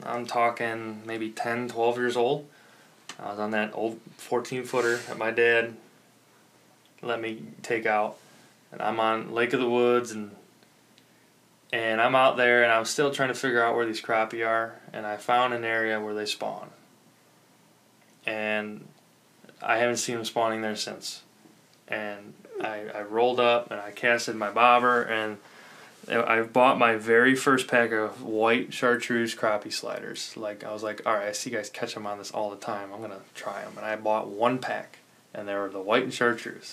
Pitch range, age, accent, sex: 110-120 Hz, 20-39, American, male